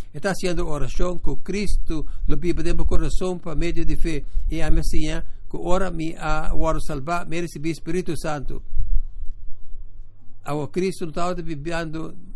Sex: male